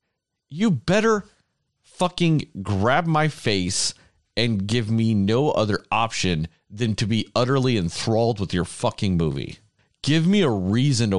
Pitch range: 95-135 Hz